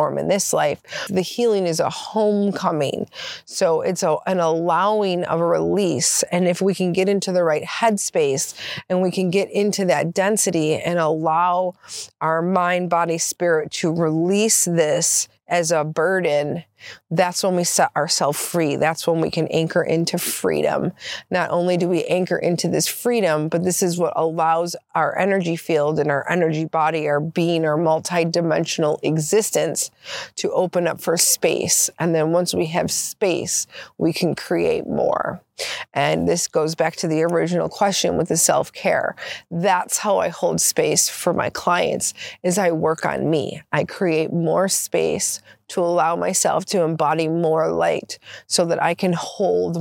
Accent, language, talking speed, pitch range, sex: American, English, 165 wpm, 160-180 Hz, female